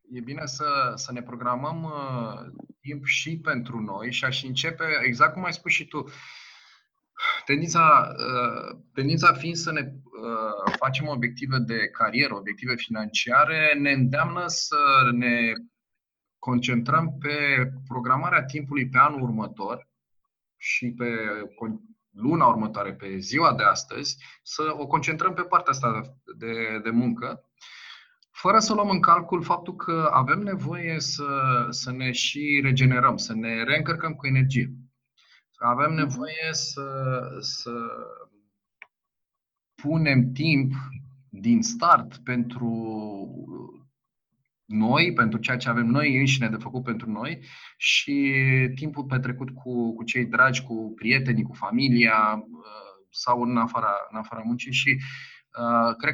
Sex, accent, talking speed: male, native, 125 wpm